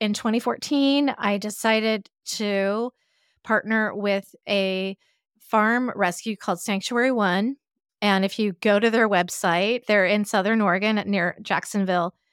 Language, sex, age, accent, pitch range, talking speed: English, female, 30-49, American, 185-225 Hz, 125 wpm